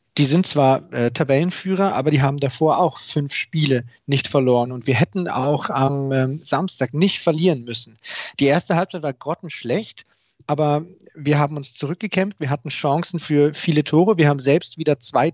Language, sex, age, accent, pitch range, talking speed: German, male, 40-59, German, 140-170 Hz, 175 wpm